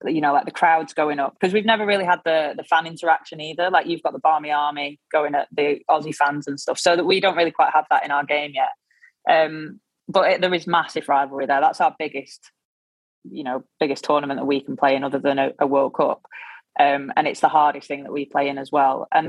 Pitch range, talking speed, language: 145-170 Hz, 250 wpm, English